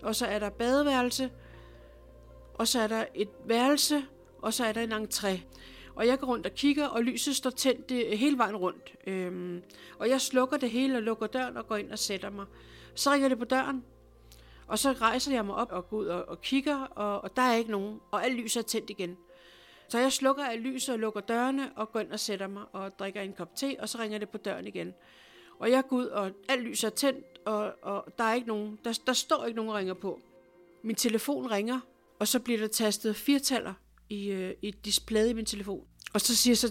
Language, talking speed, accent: Danish, 230 wpm, native